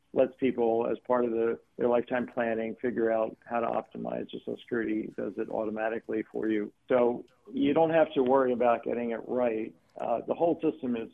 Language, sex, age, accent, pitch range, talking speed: English, male, 50-69, American, 115-130 Hz, 200 wpm